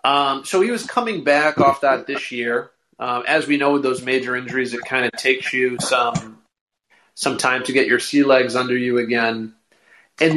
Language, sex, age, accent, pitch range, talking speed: English, male, 30-49, American, 130-155 Hz, 205 wpm